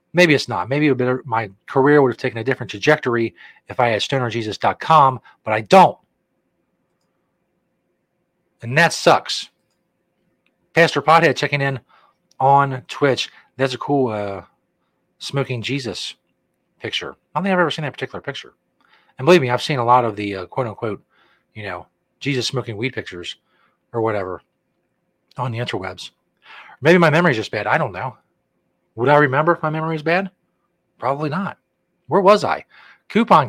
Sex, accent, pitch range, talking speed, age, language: male, American, 125-160 Hz, 160 wpm, 40-59, English